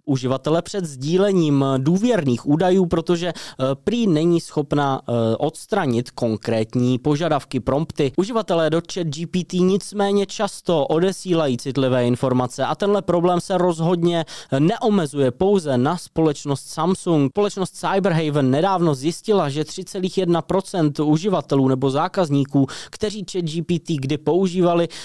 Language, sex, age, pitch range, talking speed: Czech, male, 20-39, 135-175 Hz, 110 wpm